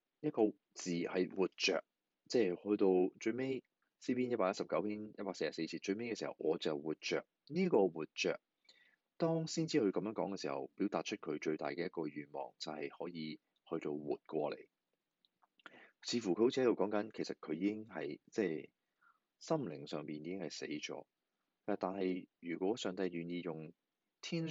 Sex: male